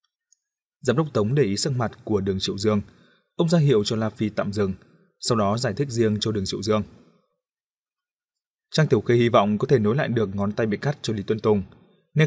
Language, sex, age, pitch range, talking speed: Vietnamese, male, 20-39, 105-160 Hz, 230 wpm